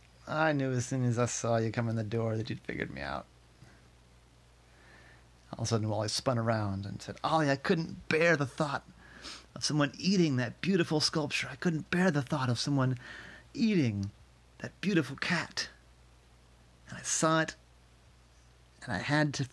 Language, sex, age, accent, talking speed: English, male, 30-49, American, 180 wpm